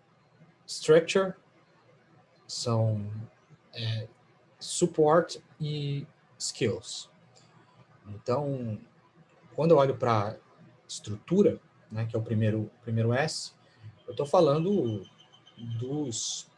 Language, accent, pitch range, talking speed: Portuguese, Brazilian, 115-150 Hz, 85 wpm